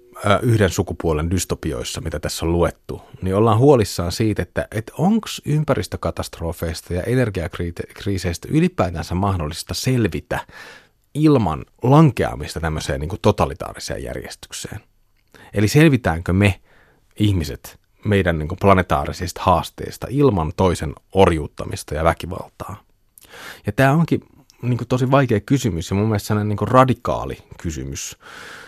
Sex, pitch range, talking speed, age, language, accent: male, 85-115 Hz, 110 wpm, 30-49, Finnish, native